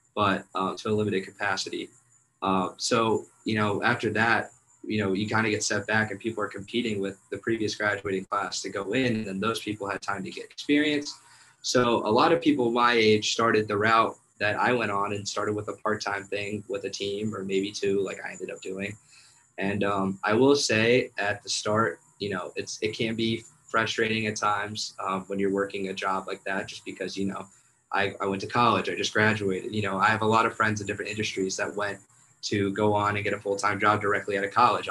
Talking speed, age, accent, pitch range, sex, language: 230 wpm, 20-39, American, 100-115 Hz, male, English